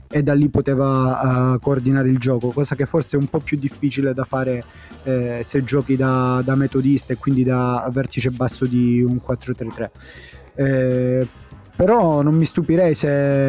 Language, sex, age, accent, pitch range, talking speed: Italian, male, 20-39, native, 130-145 Hz, 165 wpm